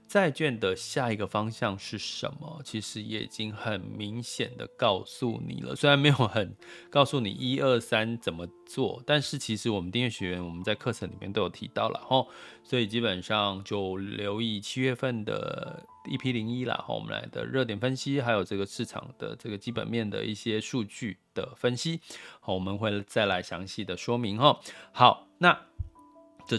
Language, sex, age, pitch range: Chinese, male, 20-39, 105-135 Hz